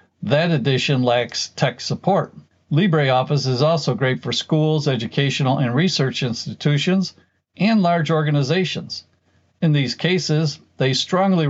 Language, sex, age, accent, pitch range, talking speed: English, male, 60-79, American, 130-155 Hz, 120 wpm